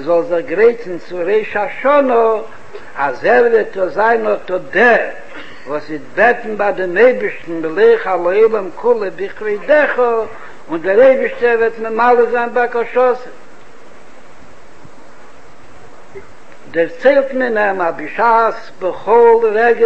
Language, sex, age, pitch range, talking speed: Hebrew, male, 60-79, 205-255 Hz, 90 wpm